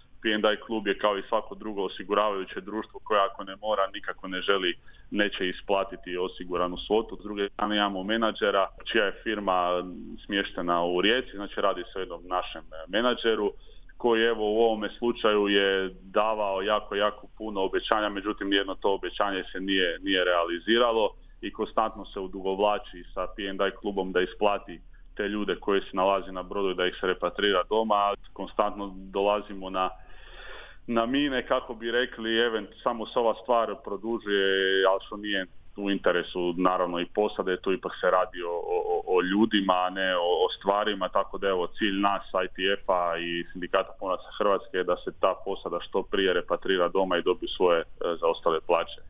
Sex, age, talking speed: male, 30-49, 170 wpm